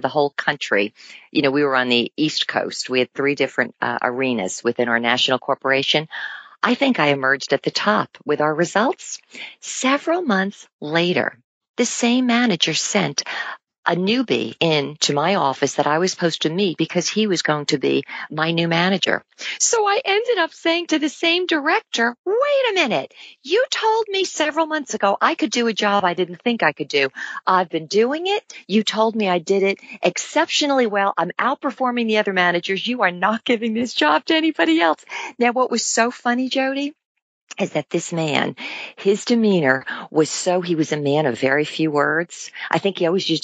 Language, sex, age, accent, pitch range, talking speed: English, female, 50-69, American, 150-240 Hz, 195 wpm